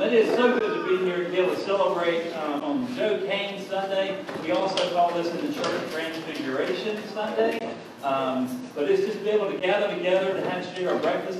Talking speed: 220 wpm